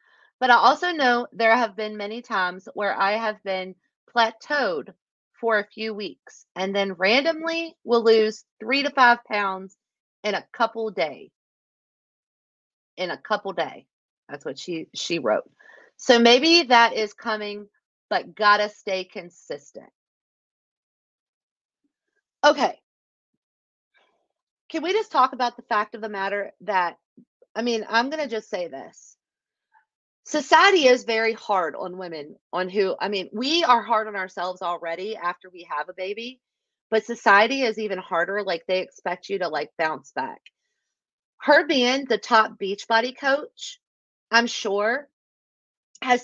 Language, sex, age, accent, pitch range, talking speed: English, female, 30-49, American, 195-270 Hz, 145 wpm